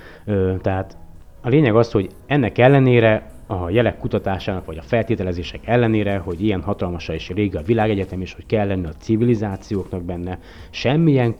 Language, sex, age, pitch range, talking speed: Hungarian, male, 30-49, 90-115 Hz, 155 wpm